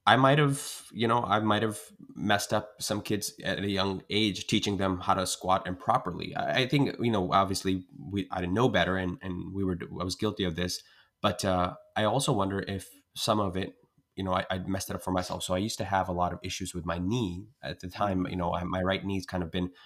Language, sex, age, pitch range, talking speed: English, male, 20-39, 90-105 Hz, 250 wpm